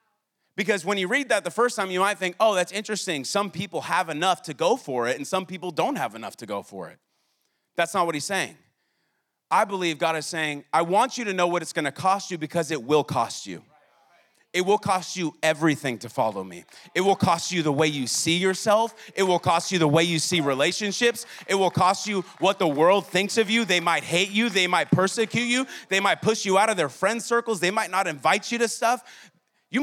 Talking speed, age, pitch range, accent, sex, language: 235 wpm, 30-49, 145-195 Hz, American, male, English